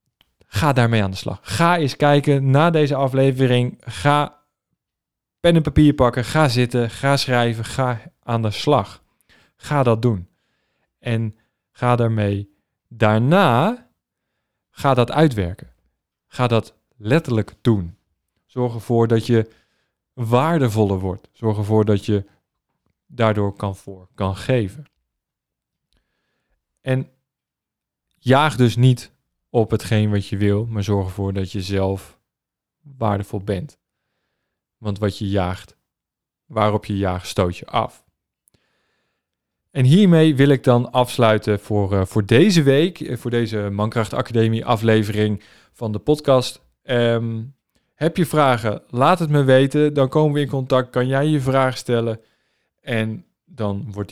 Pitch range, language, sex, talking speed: 105-135 Hz, Dutch, male, 130 wpm